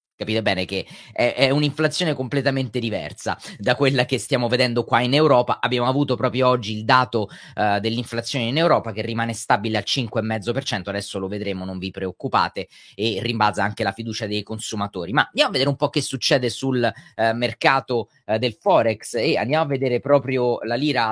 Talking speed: 185 wpm